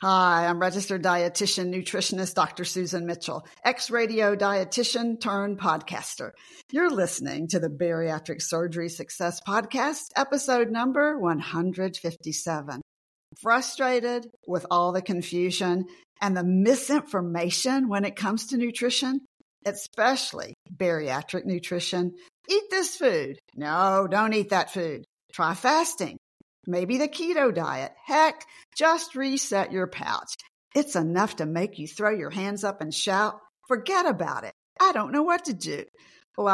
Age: 50-69